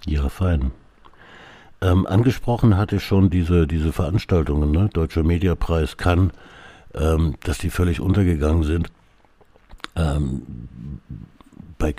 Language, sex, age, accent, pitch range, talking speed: German, male, 60-79, German, 75-90 Hz, 110 wpm